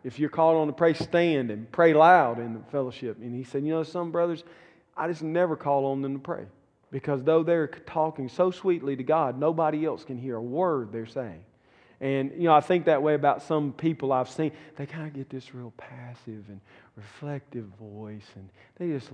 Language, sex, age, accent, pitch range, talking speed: English, male, 40-59, American, 125-155 Hz, 215 wpm